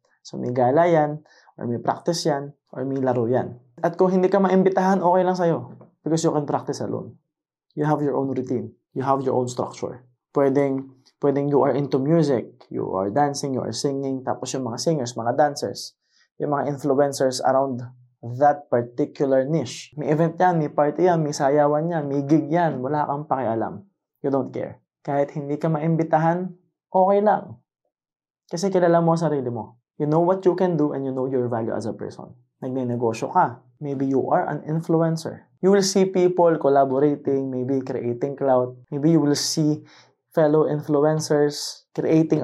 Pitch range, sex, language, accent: 135-165 Hz, male, Filipino, native